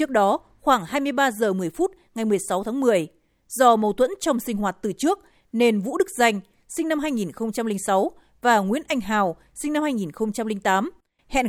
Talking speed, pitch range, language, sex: 180 wpm, 205-255 Hz, Vietnamese, female